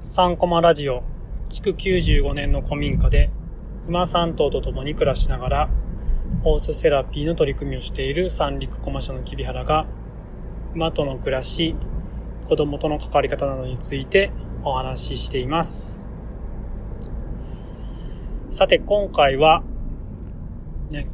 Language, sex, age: Japanese, male, 20-39